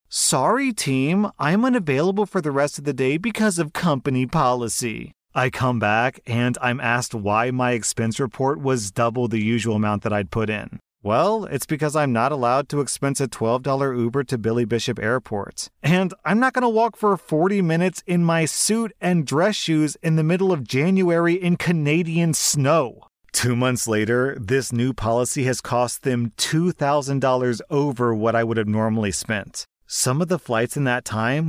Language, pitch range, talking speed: English, 115-145 Hz, 180 wpm